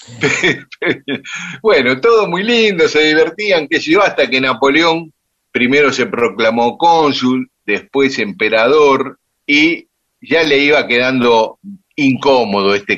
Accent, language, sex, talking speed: Argentinian, Spanish, male, 115 wpm